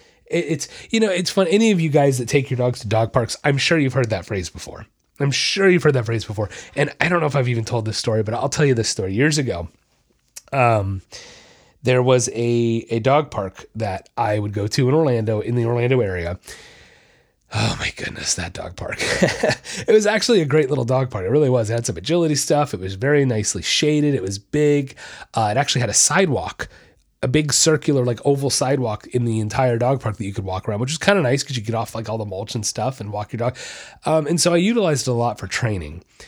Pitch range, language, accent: 110-150 Hz, English, American